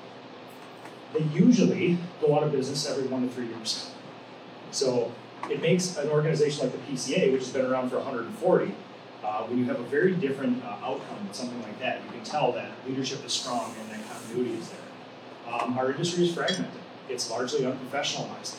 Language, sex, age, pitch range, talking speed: English, male, 30-49, 130-175 Hz, 185 wpm